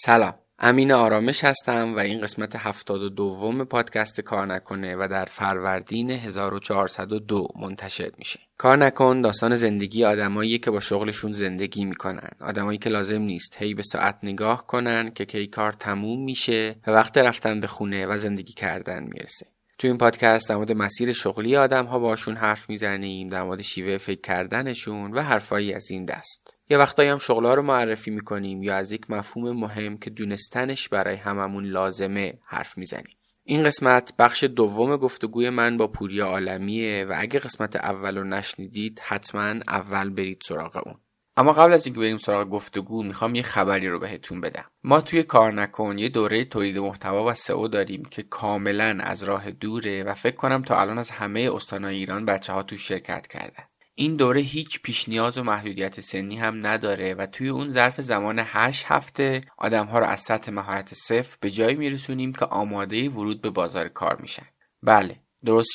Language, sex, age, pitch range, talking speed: Persian, male, 20-39, 100-120 Hz, 165 wpm